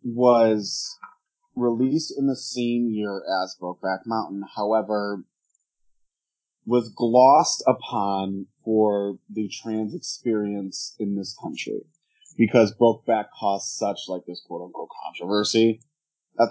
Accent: American